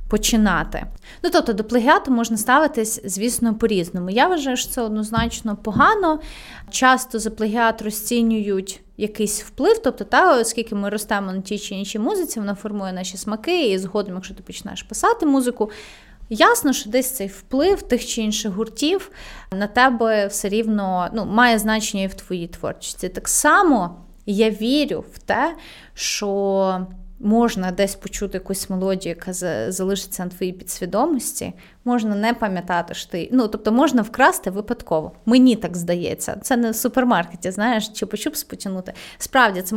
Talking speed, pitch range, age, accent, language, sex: 155 wpm, 200-250 Hz, 20-39, native, Ukrainian, female